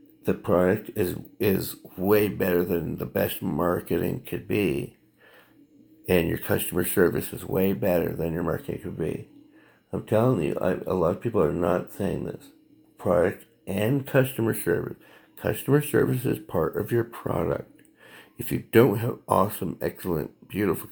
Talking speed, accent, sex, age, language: 155 wpm, American, male, 60-79, English